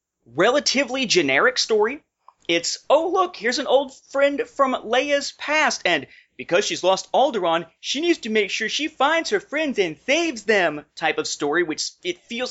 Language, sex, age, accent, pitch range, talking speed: English, male, 30-49, American, 150-230 Hz, 175 wpm